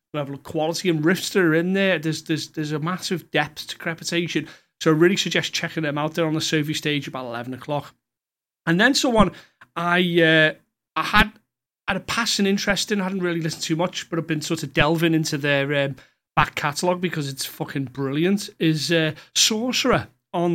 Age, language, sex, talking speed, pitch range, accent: 30-49, English, male, 205 wpm, 150-180 Hz, British